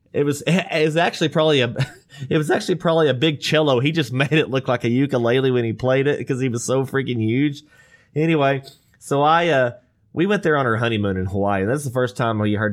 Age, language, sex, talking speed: 20-39, English, male, 240 wpm